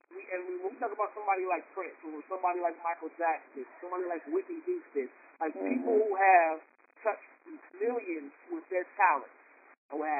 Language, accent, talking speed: English, American, 175 wpm